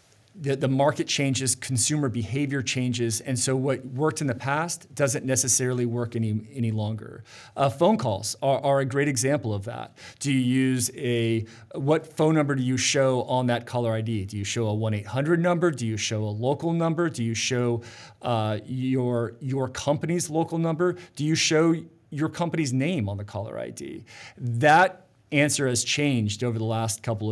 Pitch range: 115-150 Hz